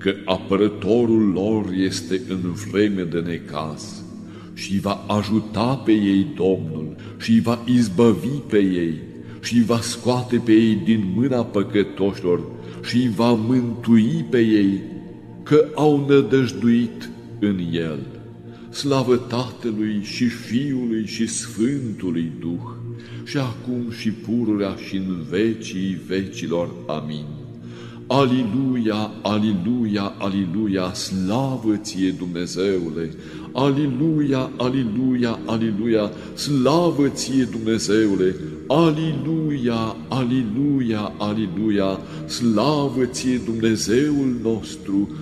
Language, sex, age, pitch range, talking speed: Romanian, male, 60-79, 95-125 Hz, 95 wpm